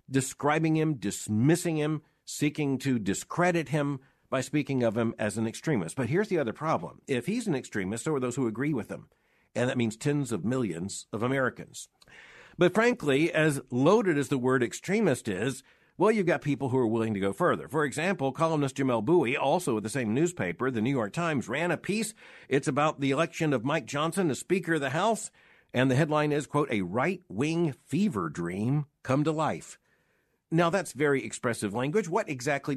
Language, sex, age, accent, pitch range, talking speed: English, male, 50-69, American, 115-160 Hz, 195 wpm